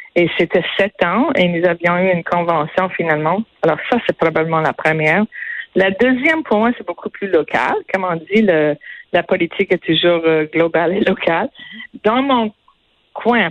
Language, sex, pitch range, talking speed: French, female, 170-215 Hz, 180 wpm